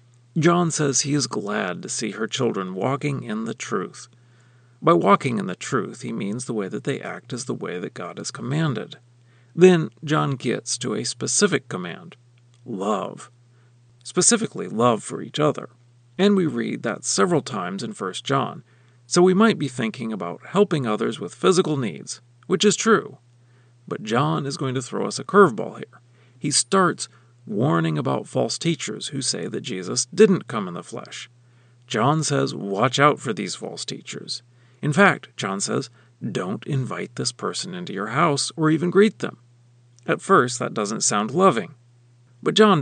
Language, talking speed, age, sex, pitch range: English, 175 wpm, 40-59, male, 120-155 Hz